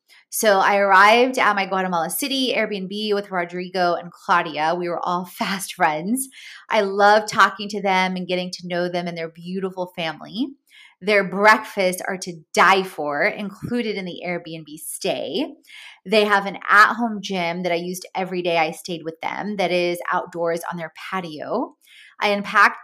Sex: female